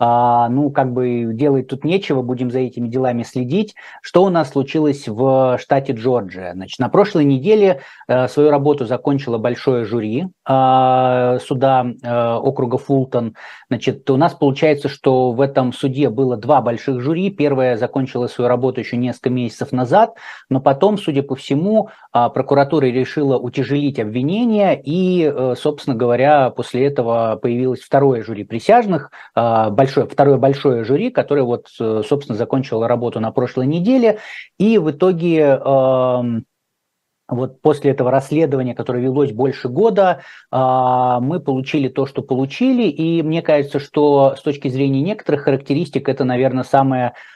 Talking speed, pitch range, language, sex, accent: 145 wpm, 125-145 Hz, Russian, male, native